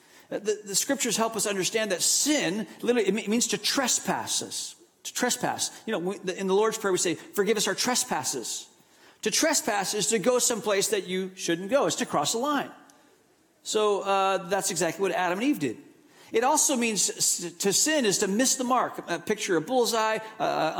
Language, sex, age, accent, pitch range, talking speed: English, male, 40-59, American, 180-240 Hz, 190 wpm